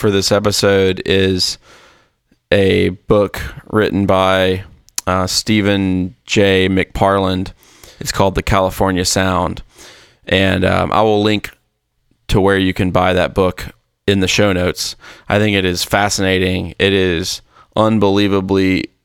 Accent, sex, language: American, male, English